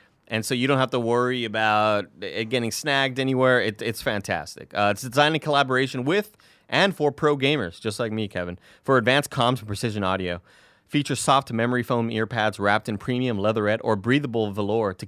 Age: 30-49